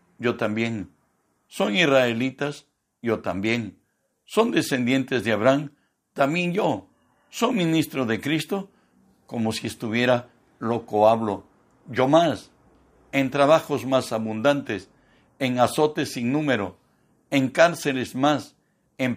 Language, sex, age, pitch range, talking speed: Spanish, male, 60-79, 115-145 Hz, 110 wpm